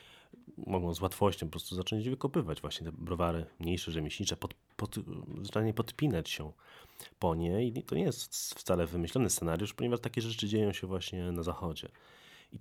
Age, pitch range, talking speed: 30-49, 85-100 Hz, 165 wpm